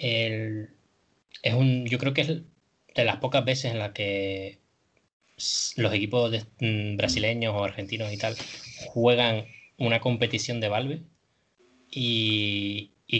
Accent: Spanish